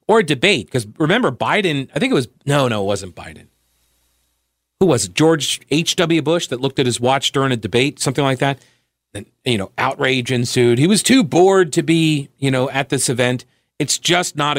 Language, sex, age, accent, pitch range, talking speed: English, male, 40-59, American, 115-150 Hz, 210 wpm